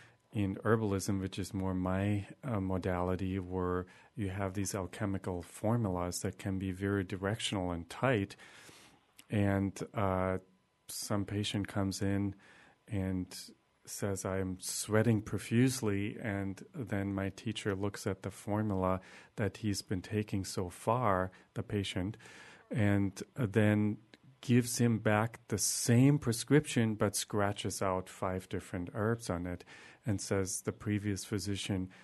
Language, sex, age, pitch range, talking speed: English, male, 40-59, 95-105 Hz, 130 wpm